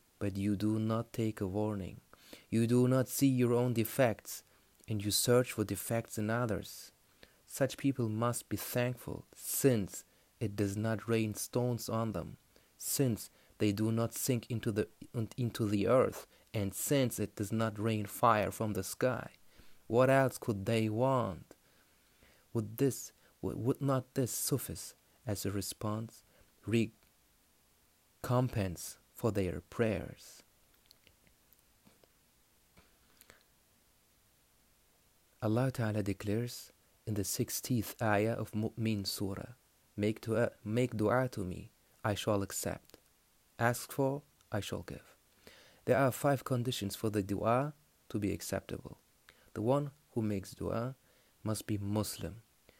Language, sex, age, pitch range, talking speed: German, male, 30-49, 105-125 Hz, 130 wpm